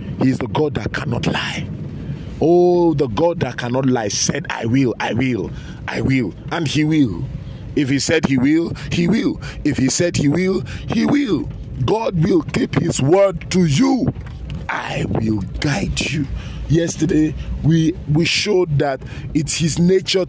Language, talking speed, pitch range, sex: English, 165 wpm, 130-165 Hz, male